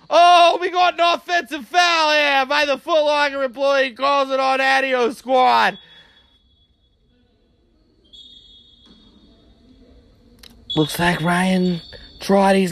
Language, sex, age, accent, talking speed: English, male, 20-39, American, 105 wpm